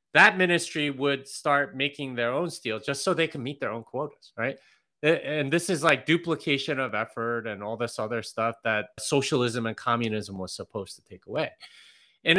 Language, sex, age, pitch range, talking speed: English, male, 30-49, 120-160 Hz, 190 wpm